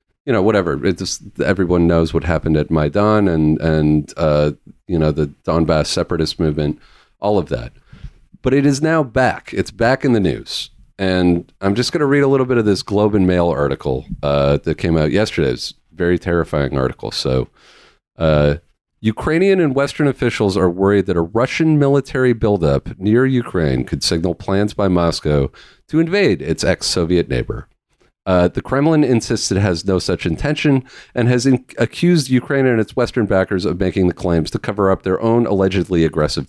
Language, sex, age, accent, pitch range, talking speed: English, male, 40-59, American, 85-120 Hz, 180 wpm